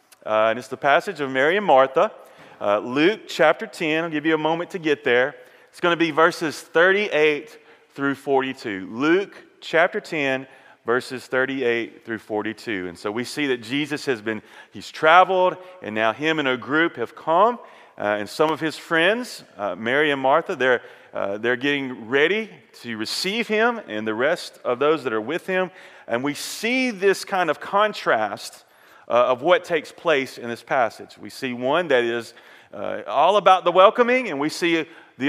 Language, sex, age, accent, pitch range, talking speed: English, male, 40-59, American, 125-180 Hz, 185 wpm